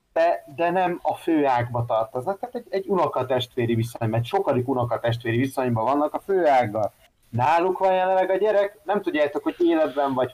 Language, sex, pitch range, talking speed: Hungarian, male, 125-195 Hz, 175 wpm